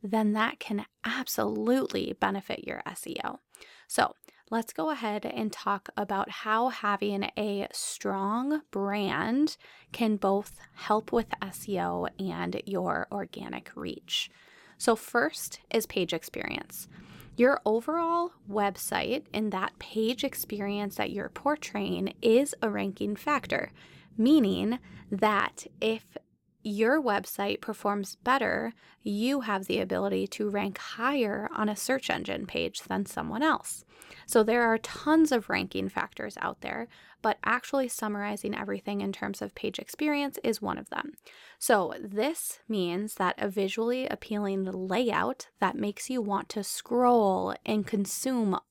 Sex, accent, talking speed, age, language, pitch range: female, American, 130 wpm, 20-39, English, 200-245 Hz